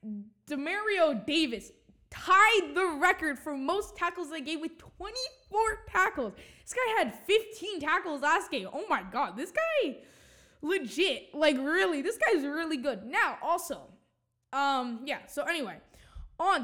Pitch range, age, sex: 255-340 Hz, 10-29, female